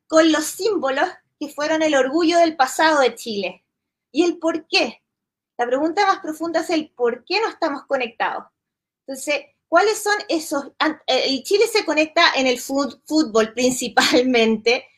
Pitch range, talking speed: 260-340 Hz, 150 wpm